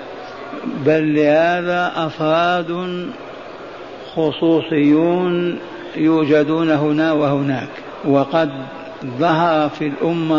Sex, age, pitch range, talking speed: male, 60-79, 150-175 Hz, 65 wpm